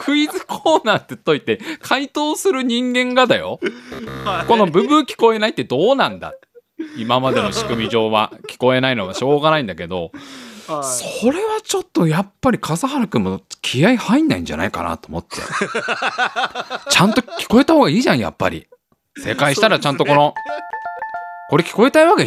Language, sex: Japanese, male